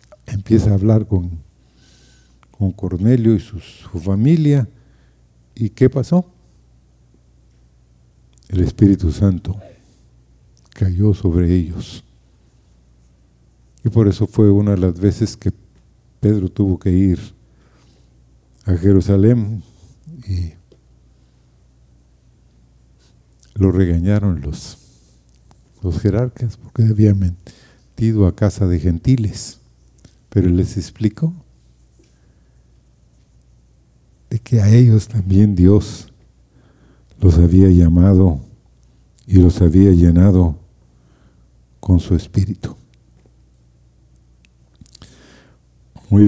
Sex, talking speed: male, 85 wpm